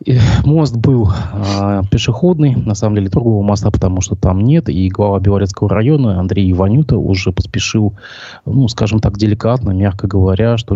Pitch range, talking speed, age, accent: 95-115 Hz, 160 wpm, 20-39, native